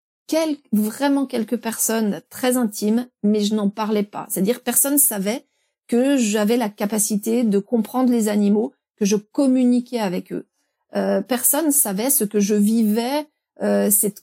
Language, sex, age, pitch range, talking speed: French, female, 40-59, 200-240 Hz, 160 wpm